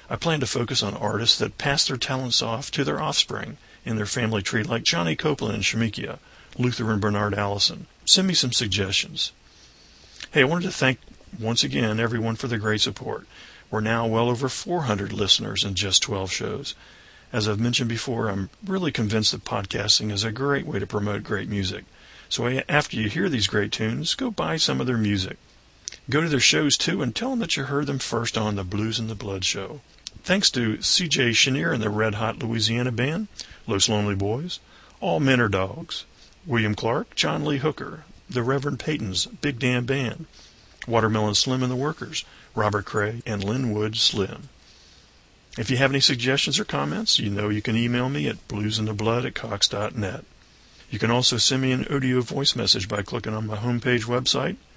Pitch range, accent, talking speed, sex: 105-130 Hz, American, 190 wpm, male